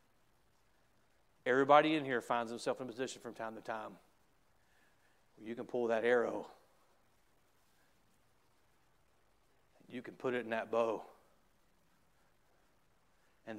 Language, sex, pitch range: English, male, 115-155 Hz